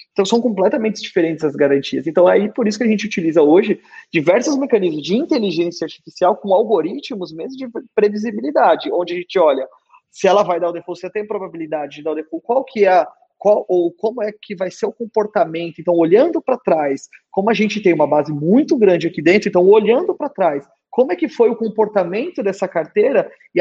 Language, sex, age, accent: Portuguese, male, 30-49, Brazilian